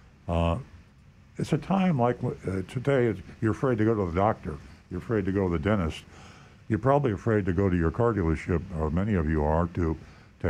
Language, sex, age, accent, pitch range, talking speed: English, male, 60-79, American, 85-110 Hz, 235 wpm